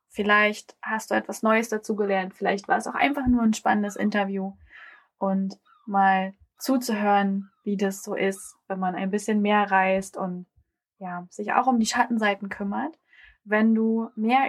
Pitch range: 195-235 Hz